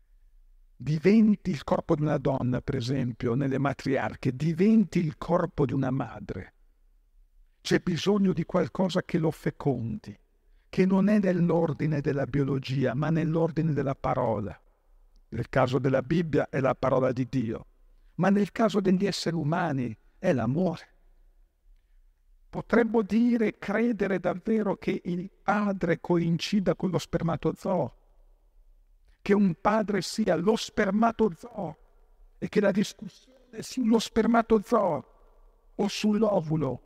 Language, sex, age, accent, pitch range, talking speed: Italian, male, 50-69, native, 135-195 Hz, 120 wpm